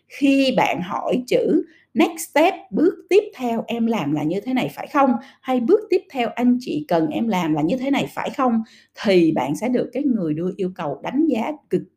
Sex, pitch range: female, 180-300 Hz